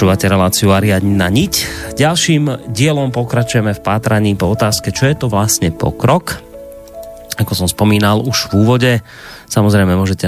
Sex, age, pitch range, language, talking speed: male, 30-49, 95-120 Hz, Slovak, 130 wpm